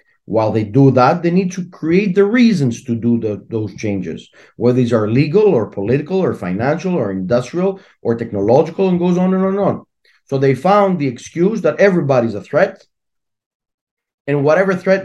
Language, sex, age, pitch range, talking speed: English, male, 40-59, 120-170 Hz, 180 wpm